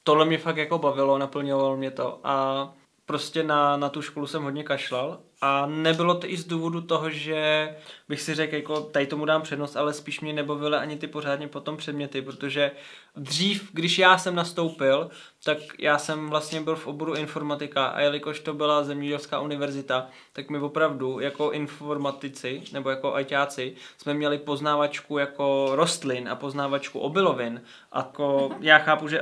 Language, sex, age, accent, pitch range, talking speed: Czech, male, 20-39, native, 135-150 Hz, 170 wpm